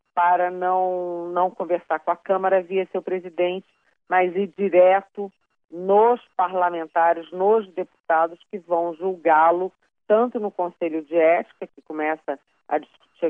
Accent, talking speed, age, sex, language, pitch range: Brazilian, 130 wpm, 40-59, female, Portuguese, 165-215 Hz